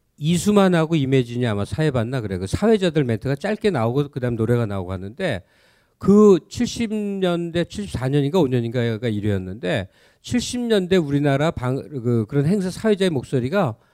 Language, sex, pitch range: Korean, male, 115-170 Hz